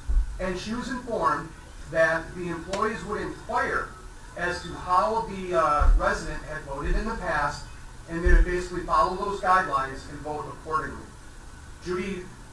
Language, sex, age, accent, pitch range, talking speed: English, male, 40-59, American, 145-190 Hz, 150 wpm